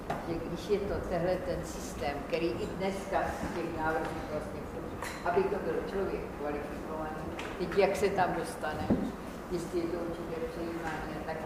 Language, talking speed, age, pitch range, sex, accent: Czech, 145 wpm, 40-59, 170-185 Hz, female, native